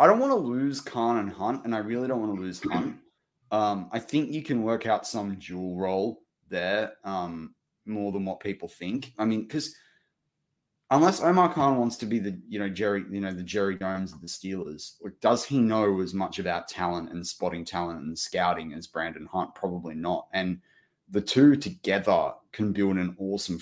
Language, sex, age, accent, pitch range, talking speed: English, male, 20-39, Australian, 95-105 Hz, 205 wpm